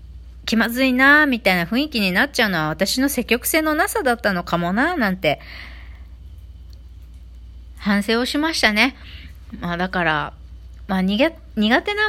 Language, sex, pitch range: Japanese, female, 155-260 Hz